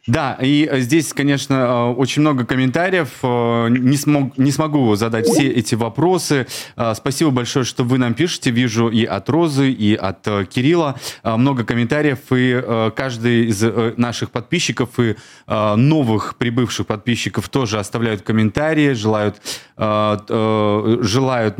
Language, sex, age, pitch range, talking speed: Russian, male, 20-39, 115-140 Hz, 120 wpm